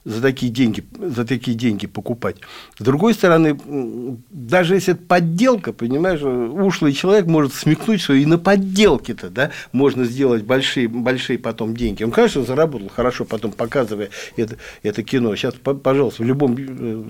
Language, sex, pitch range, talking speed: Russian, male, 120-165 Hz, 145 wpm